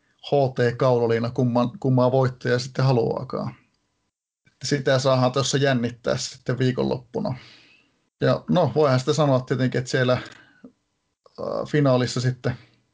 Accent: native